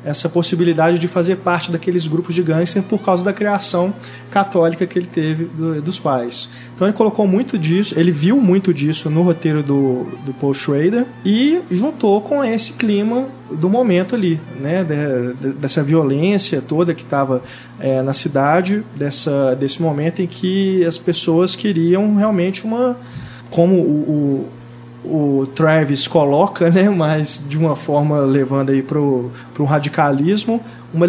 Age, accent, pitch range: 20-39, Brazilian, 140-190 Hz